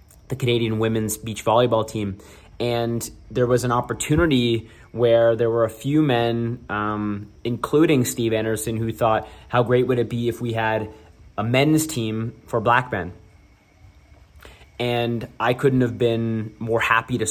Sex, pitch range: male, 110-130 Hz